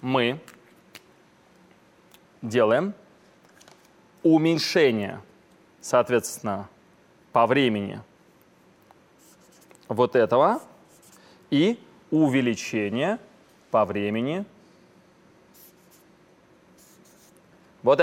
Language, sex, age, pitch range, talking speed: Russian, male, 30-49, 130-180 Hz, 45 wpm